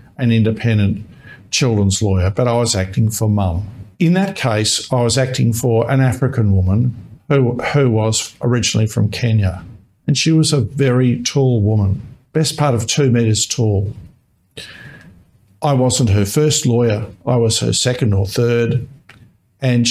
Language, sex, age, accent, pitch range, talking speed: English, male, 50-69, Australian, 105-130 Hz, 155 wpm